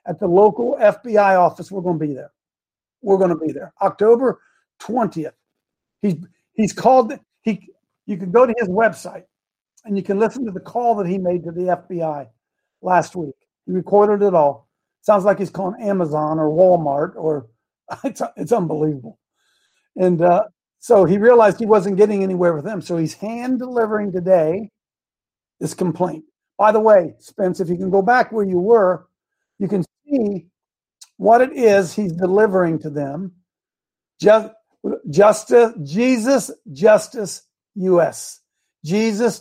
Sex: male